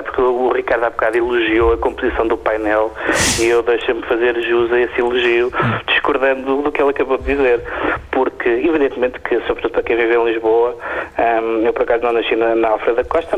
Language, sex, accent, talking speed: Portuguese, male, Portuguese, 195 wpm